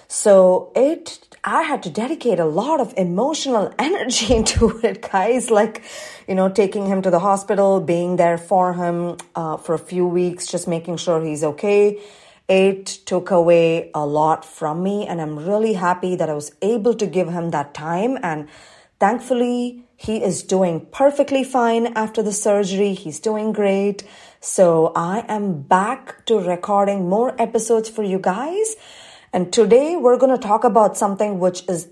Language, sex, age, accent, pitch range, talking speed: English, female, 30-49, Indian, 170-230 Hz, 170 wpm